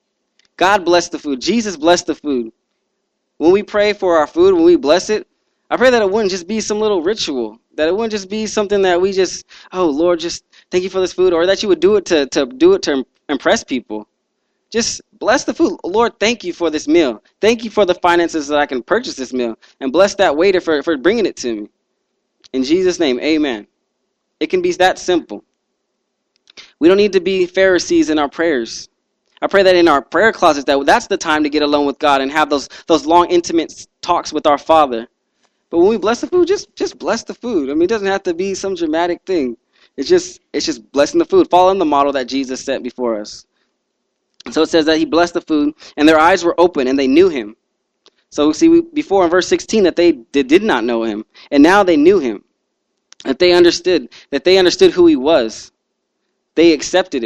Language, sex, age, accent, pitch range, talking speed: English, male, 20-39, American, 155-235 Hz, 225 wpm